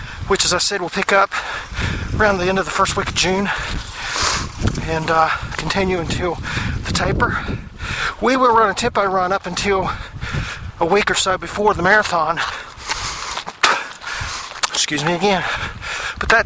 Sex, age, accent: male, 40-59, American